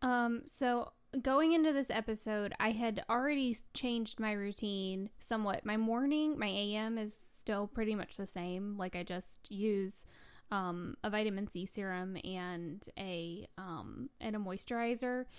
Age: 10-29